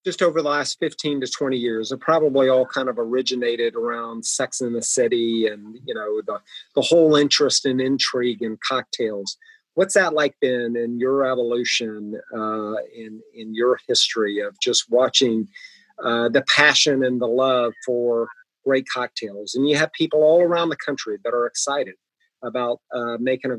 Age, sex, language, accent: 40-59, male, English, American